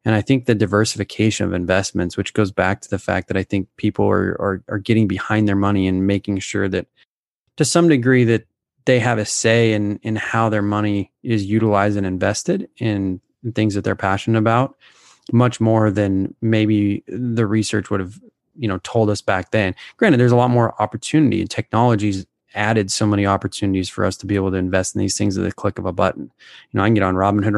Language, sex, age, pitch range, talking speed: English, male, 20-39, 100-115 Hz, 220 wpm